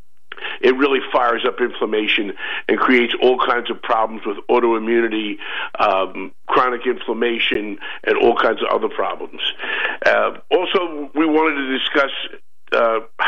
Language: English